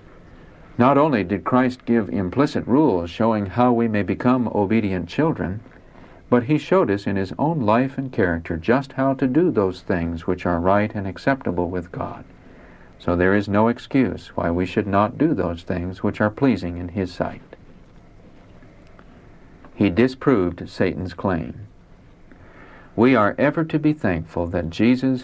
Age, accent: 60-79, American